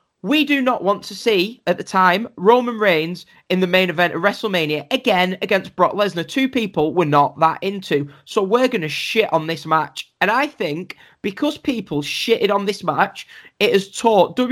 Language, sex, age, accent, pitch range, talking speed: English, male, 20-39, British, 155-205 Hz, 190 wpm